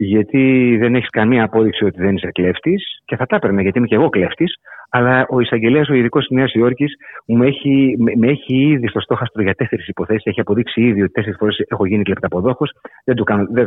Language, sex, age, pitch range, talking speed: Greek, male, 30-49, 110-160 Hz, 210 wpm